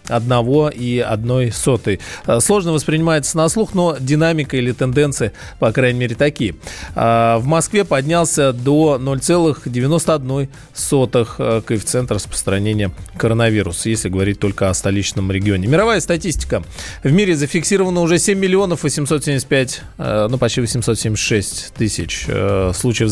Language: Russian